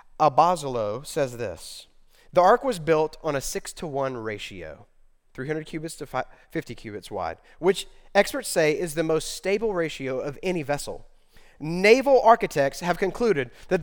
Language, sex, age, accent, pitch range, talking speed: English, male, 30-49, American, 160-205 Hz, 150 wpm